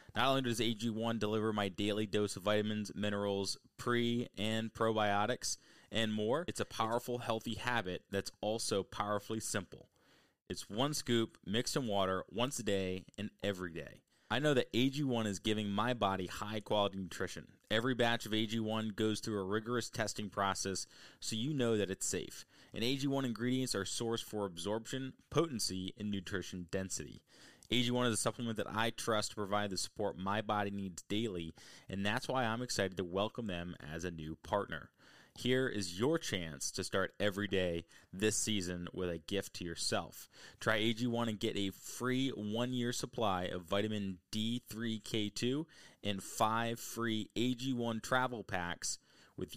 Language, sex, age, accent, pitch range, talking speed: English, male, 20-39, American, 100-115 Hz, 165 wpm